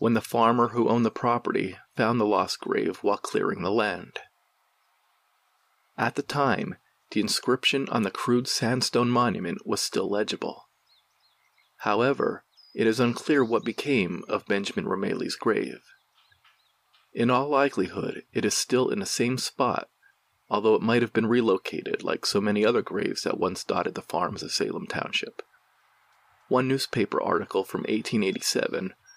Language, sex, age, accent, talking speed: English, male, 40-59, American, 150 wpm